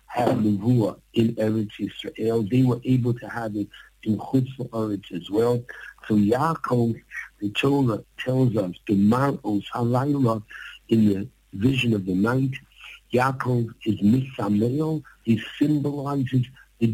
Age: 60-79